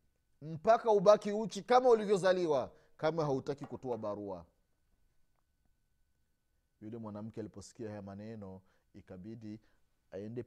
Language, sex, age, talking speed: Swahili, male, 30-49, 90 wpm